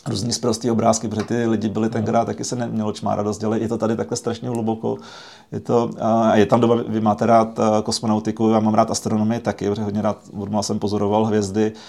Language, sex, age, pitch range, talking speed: Czech, male, 30-49, 105-115 Hz, 200 wpm